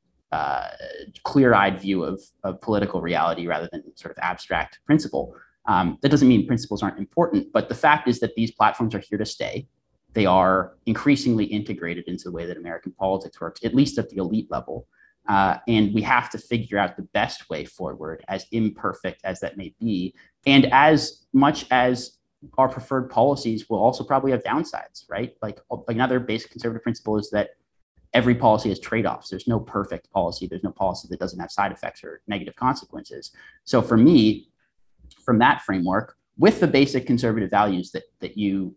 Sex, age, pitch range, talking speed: male, 30-49, 100-125 Hz, 185 wpm